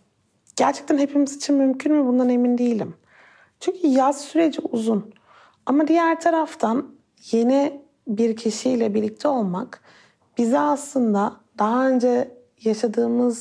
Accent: native